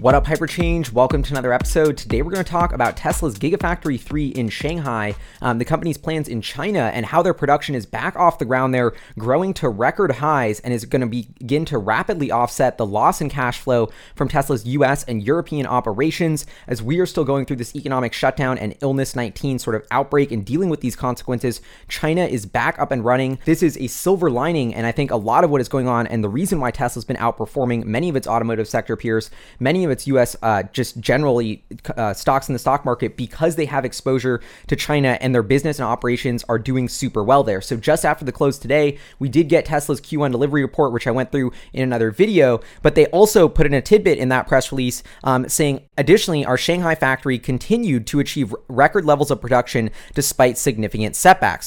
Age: 20-39